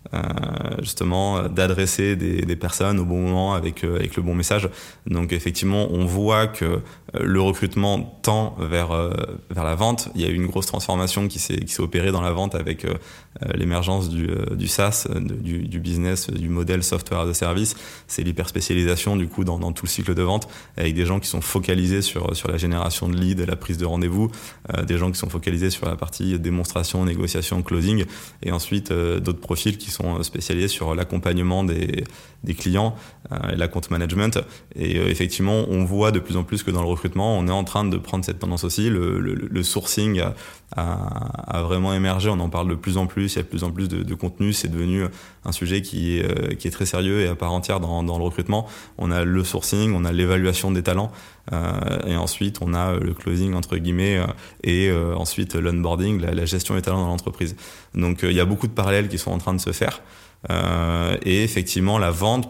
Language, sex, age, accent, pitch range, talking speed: French, male, 20-39, French, 85-100 Hz, 220 wpm